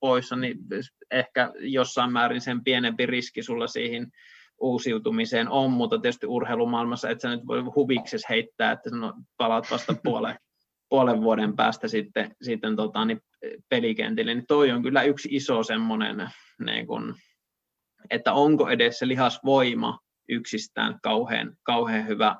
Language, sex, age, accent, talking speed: Finnish, male, 20-39, native, 135 wpm